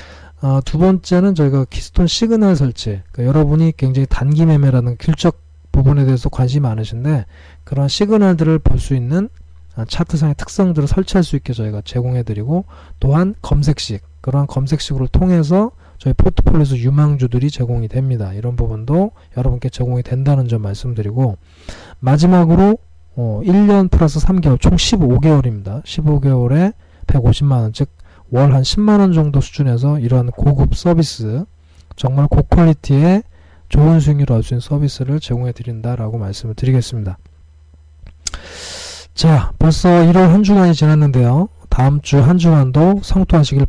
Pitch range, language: 115-155 Hz, Korean